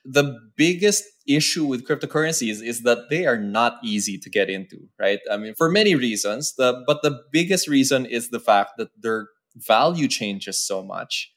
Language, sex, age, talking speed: English, male, 20-39, 185 wpm